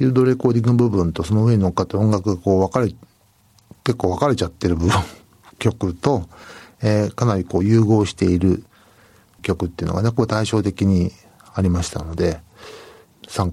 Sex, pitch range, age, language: male, 90-120 Hz, 60-79, Japanese